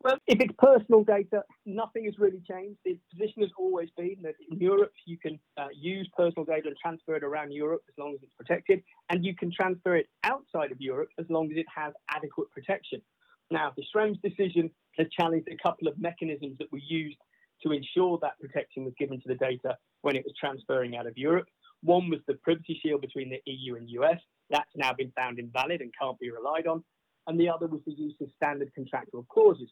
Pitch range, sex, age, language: 140-185 Hz, male, 30-49, English